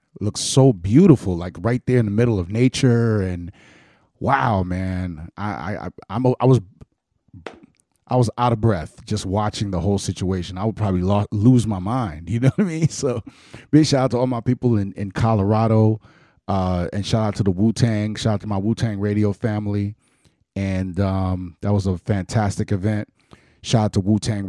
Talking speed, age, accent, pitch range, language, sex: 200 wpm, 30-49, American, 95-115 Hz, English, male